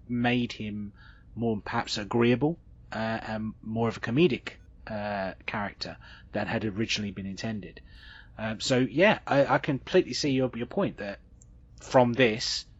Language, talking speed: English, 145 wpm